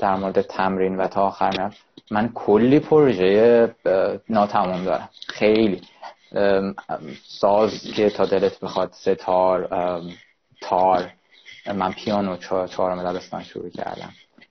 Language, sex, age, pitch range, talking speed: Persian, male, 20-39, 95-125 Hz, 110 wpm